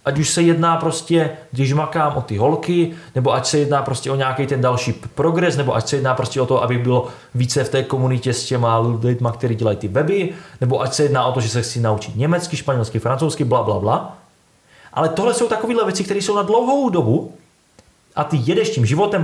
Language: Czech